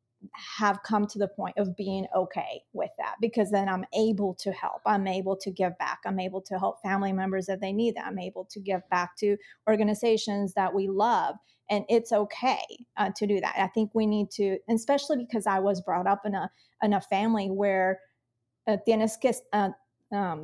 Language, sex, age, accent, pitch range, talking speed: English, female, 30-49, American, 190-220 Hz, 205 wpm